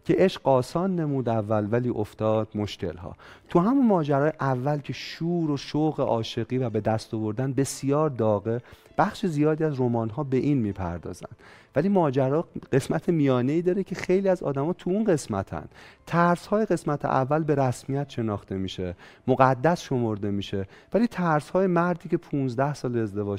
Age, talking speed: 30-49, 155 wpm